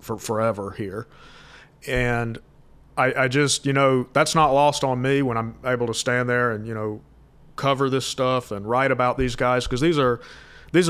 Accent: American